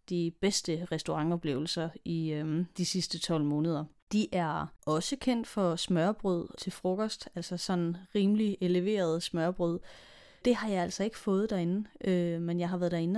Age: 30-49